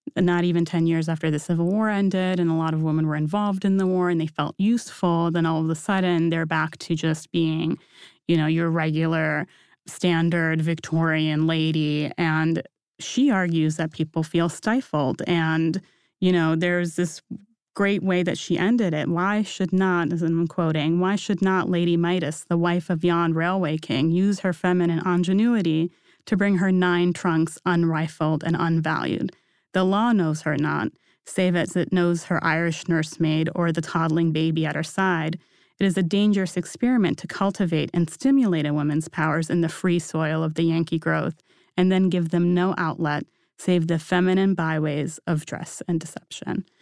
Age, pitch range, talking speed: 20-39, 160-185 Hz, 180 wpm